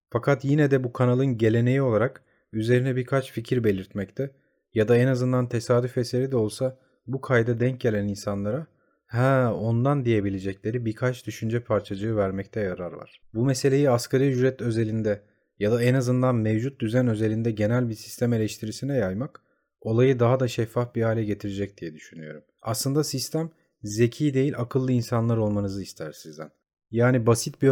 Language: Turkish